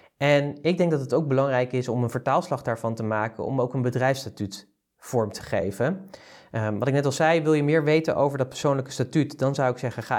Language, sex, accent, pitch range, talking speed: Dutch, male, Dutch, 115-145 Hz, 230 wpm